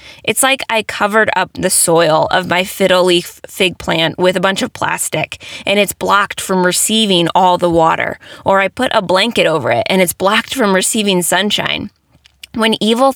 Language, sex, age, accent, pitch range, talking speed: English, female, 20-39, American, 180-230 Hz, 185 wpm